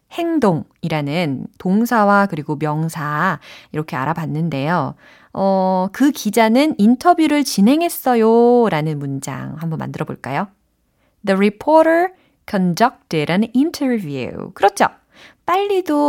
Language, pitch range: Korean, 160-265 Hz